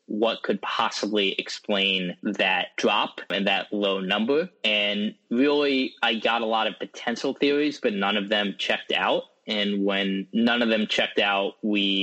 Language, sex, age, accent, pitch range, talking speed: English, male, 20-39, American, 95-120 Hz, 165 wpm